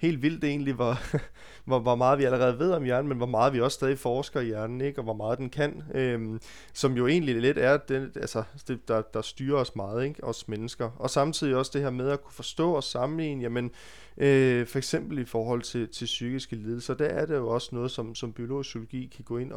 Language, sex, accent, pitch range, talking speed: Danish, male, native, 115-140 Hz, 235 wpm